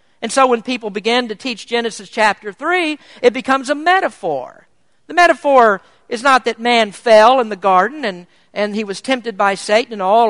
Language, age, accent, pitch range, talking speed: English, 50-69, American, 200-265 Hz, 190 wpm